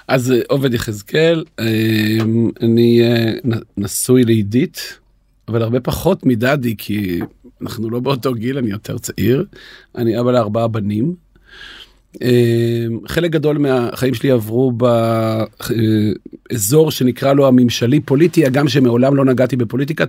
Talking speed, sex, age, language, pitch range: 110 wpm, male, 40-59, Hebrew, 115-140 Hz